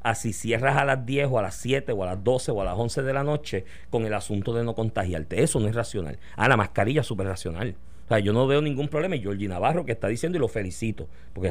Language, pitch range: Spanish, 100-155 Hz